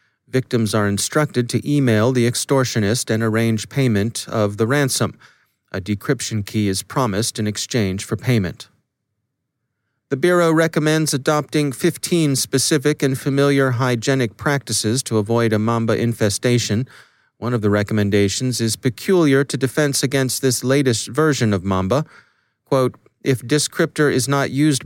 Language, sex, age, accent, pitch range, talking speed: English, male, 40-59, American, 110-140 Hz, 140 wpm